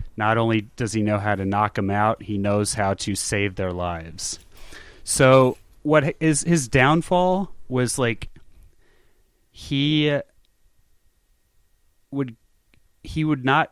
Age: 30-49